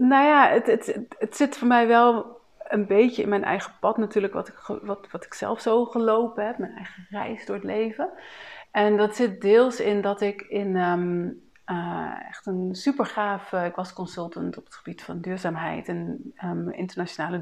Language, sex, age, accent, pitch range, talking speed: Dutch, female, 30-49, Dutch, 175-225 Hz, 175 wpm